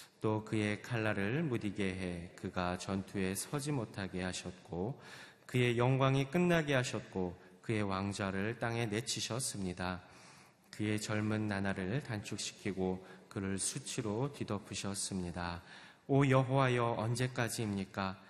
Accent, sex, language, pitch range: native, male, Korean, 95-125 Hz